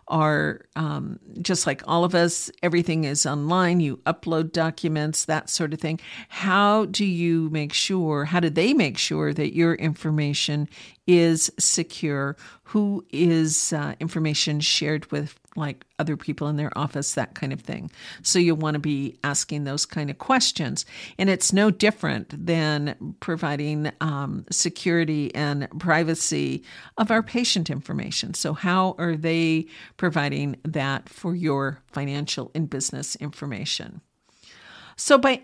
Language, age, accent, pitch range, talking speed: English, 50-69, American, 155-195 Hz, 145 wpm